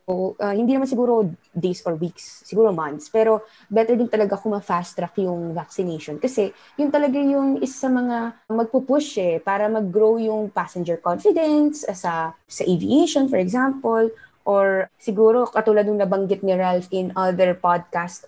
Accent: Filipino